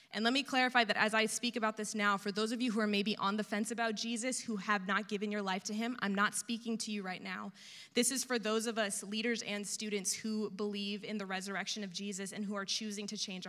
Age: 20-39